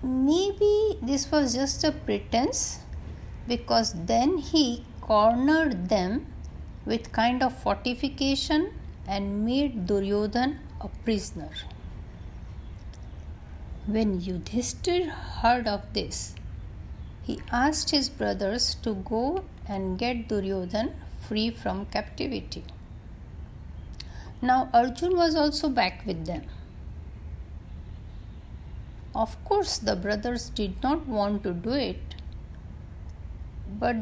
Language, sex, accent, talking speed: Hindi, female, native, 95 wpm